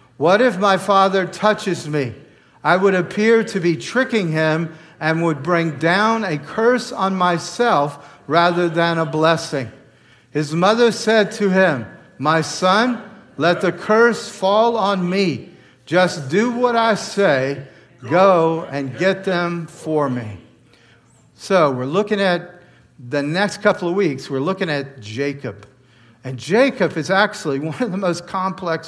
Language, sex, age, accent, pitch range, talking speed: English, male, 50-69, American, 150-205 Hz, 150 wpm